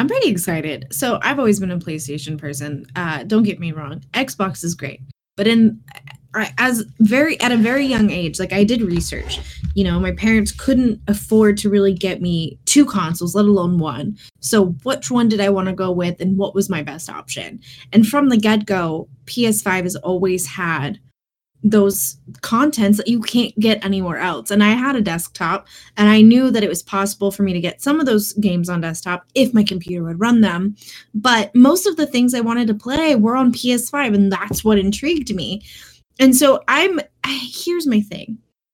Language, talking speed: English, 200 wpm